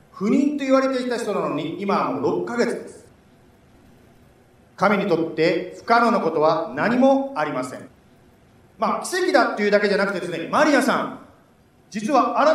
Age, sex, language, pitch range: 40-59, male, Japanese, 210-295 Hz